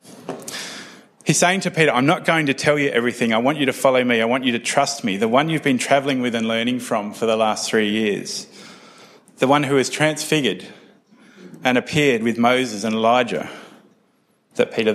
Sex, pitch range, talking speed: male, 115-150 Hz, 200 wpm